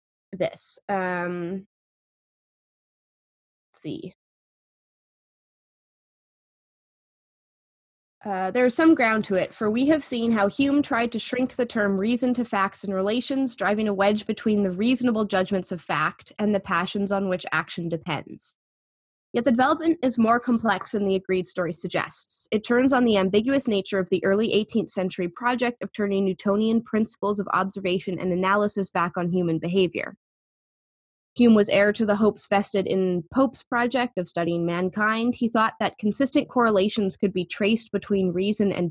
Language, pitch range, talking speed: English, 185-230 Hz, 155 wpm